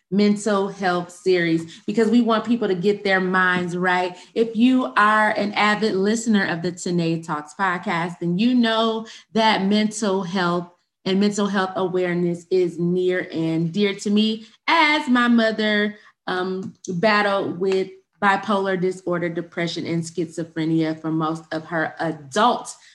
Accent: American